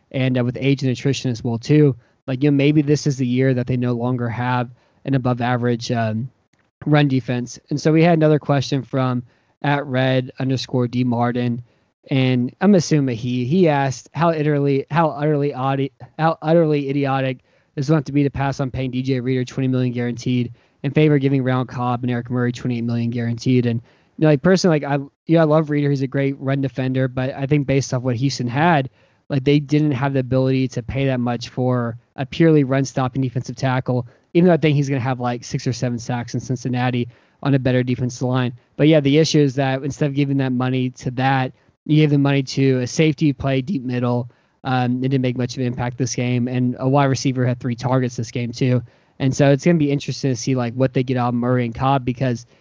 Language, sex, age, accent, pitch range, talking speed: English, male, 20-39, American, 125-140 Hz, 230 wpm